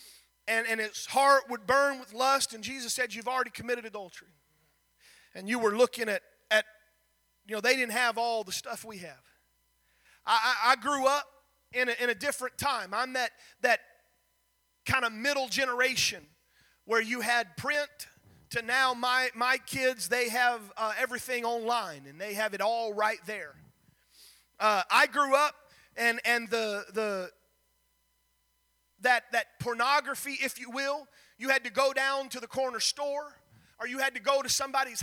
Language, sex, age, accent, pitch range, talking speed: English, male, 40-59, American, 230-275 Hz, 170 wpm